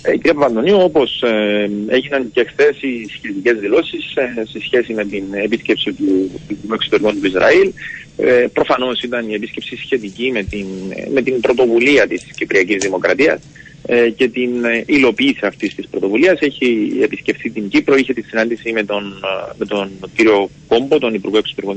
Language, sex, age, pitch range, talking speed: Greek, male, 40-59, 105-140 Hz, 145 wpm